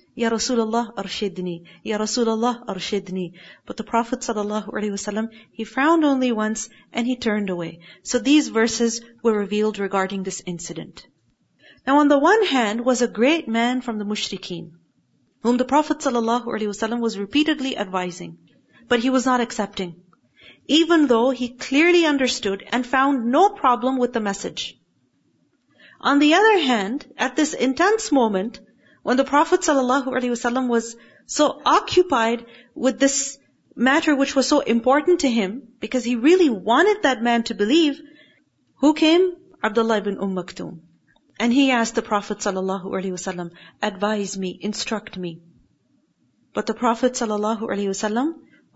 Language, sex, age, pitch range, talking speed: English, female, 40-59, 210-270 Hz, 140 wpm